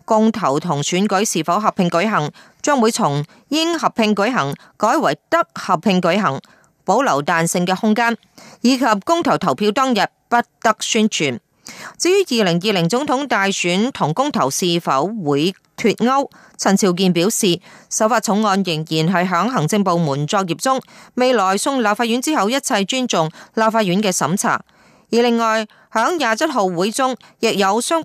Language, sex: Japanese, female